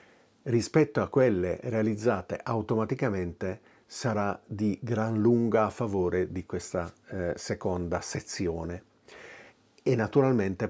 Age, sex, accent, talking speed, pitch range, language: 50-69, male, native, 100 wpm, 100-125 Hz, Italian